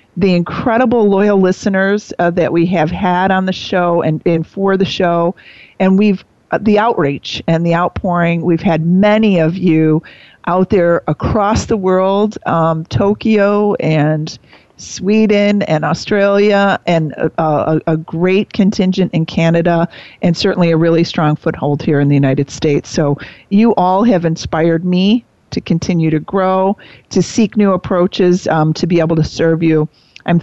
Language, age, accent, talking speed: English, 40-59, American, 160 wpm